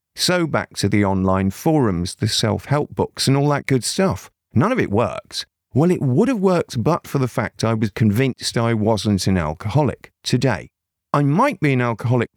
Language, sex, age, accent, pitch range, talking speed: English, male, 50-69, British, 100-140 Hz, 195 wpm